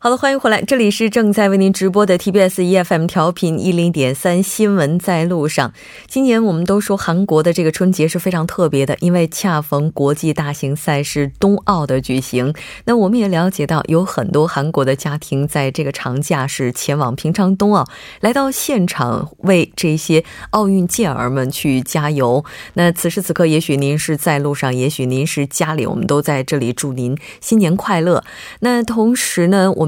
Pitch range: 145-195 Hz